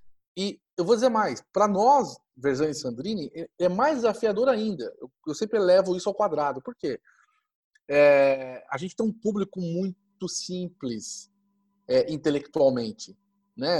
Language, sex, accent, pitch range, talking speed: Portuguese, male, Brazilian, 130-200 Hz, 140 wpm